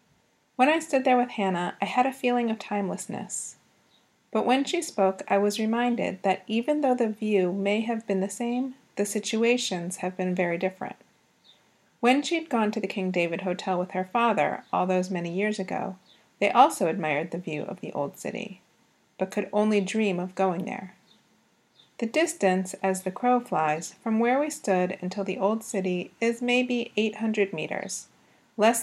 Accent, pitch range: American, 190-240 Hz